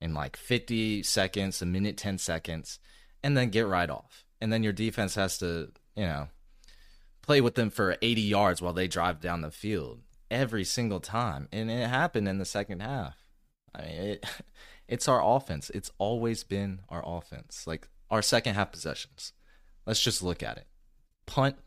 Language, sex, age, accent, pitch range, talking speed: English, male, 20-39, American, 80-110 Hz, 175 wpm